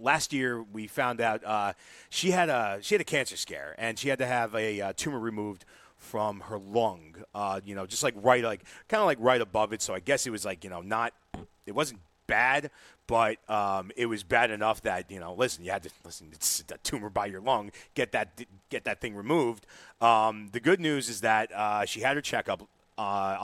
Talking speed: 230 wpm